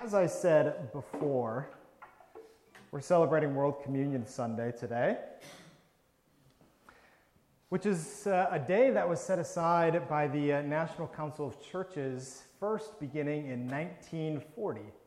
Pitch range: 140-185 Hz